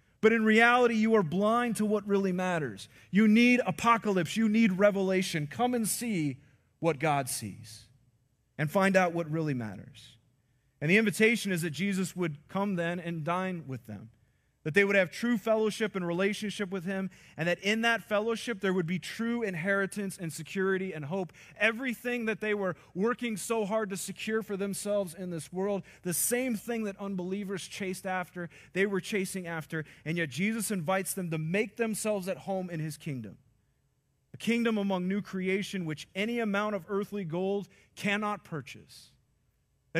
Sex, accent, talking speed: male, American, 175 wpm